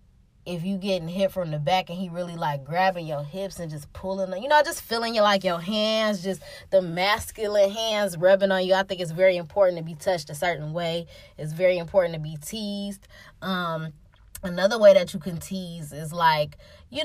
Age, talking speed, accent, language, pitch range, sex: 20-39, 210 wpm, American, English, 165-215 Hz, female